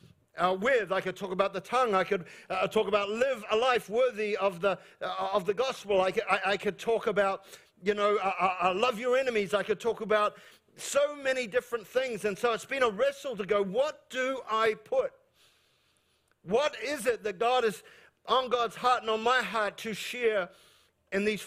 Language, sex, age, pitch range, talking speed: English, male, 50-69, 210-265 Hz, 205 wpm